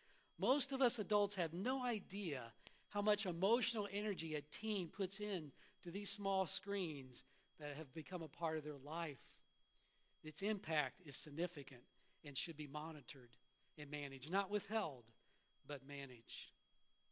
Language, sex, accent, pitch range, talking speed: English, male, American, 160-210 Hz, 145 wpm